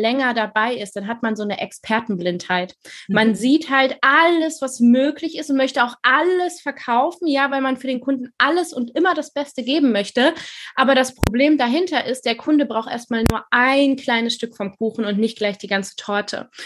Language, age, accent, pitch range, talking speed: German, 20-39, German, 210-265 Hz, 200 wpm